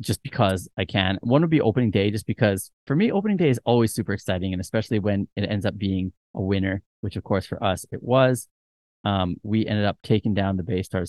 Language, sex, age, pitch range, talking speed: English, male, 30-49, 95-115 Hz, 240 wpm